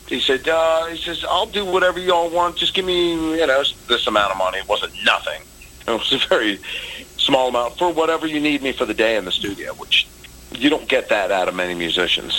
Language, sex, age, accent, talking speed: English, male, 40-59, American, 230 wpm